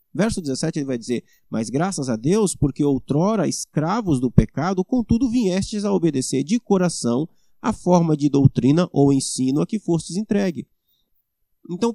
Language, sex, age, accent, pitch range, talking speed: Portuguese, male, 20-39, Brazilian, 140-200 Hz, 155 wpm